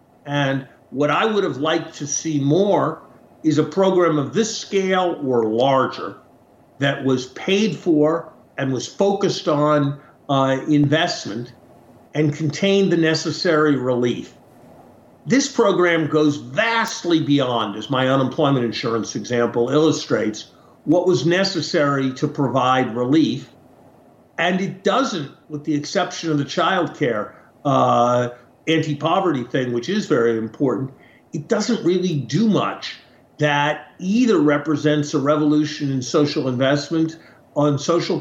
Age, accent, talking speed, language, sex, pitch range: 50-69, American, 125 wpm, English, male, 135-170 Hz